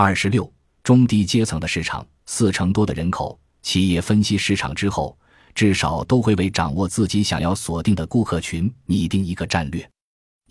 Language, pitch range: Chinese, 85-115 Hz